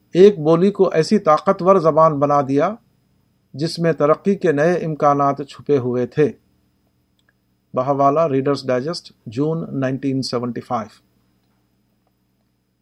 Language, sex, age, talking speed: Urdu, male, 50-69, 110 wpm